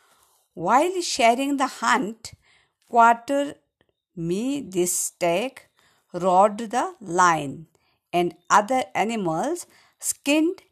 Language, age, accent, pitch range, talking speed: Hindi, 50-69, native, 185-295 Hz, 85 wpm